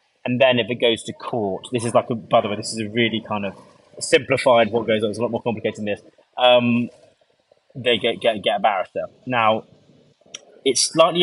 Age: 20-39